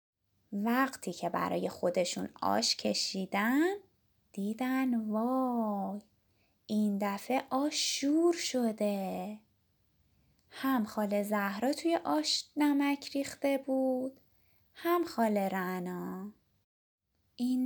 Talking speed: 80 wpm